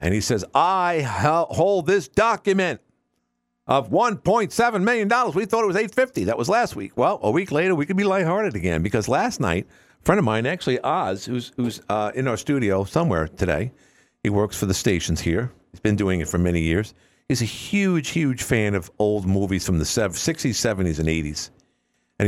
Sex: male